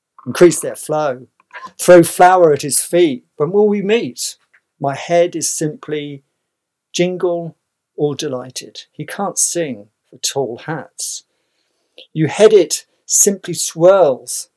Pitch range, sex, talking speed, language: 130-170 Hz, male, 125 wpm, English